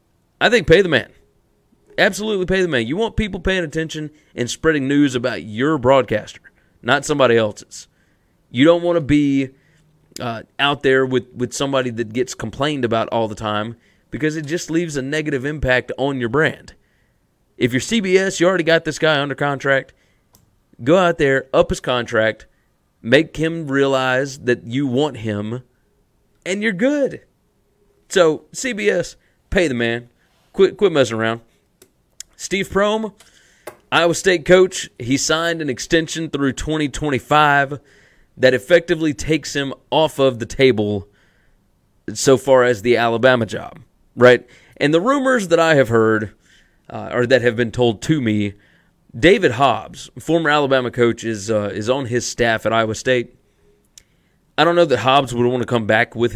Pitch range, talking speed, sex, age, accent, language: 120-160 Hz, 160 wpm, male, 30-49, American, English